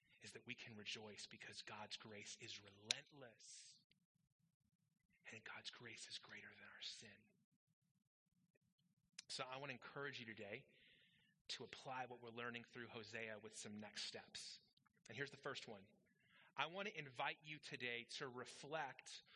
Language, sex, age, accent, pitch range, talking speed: English, male, 30-49, American, 120-170 Hz, 145 wpm